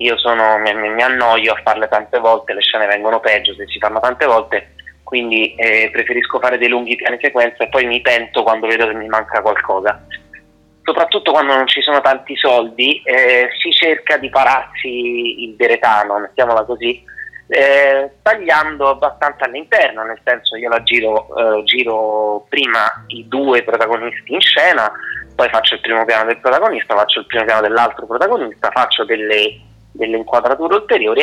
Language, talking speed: Italian, 170 wpm